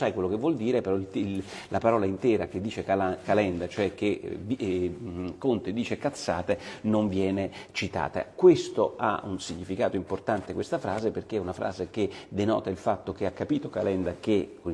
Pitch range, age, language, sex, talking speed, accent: 95-105 Hz, 40-59, Italian, male, 170 wpm, native